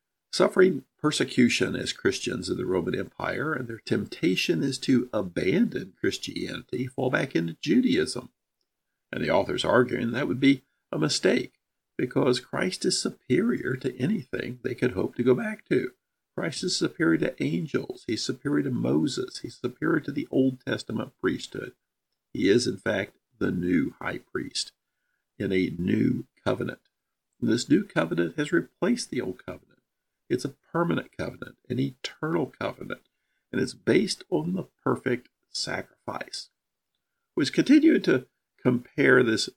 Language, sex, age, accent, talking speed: English, male, 50-69, American, 145 wpm